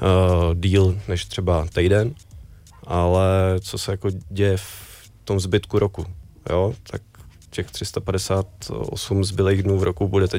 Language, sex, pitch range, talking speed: Czech, male, 90-100 Hz, 135 wpm